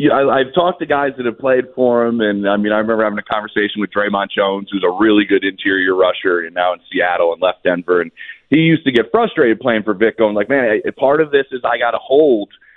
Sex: male